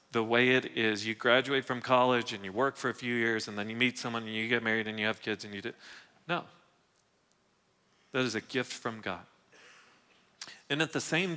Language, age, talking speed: English, 40-59, 220 wpm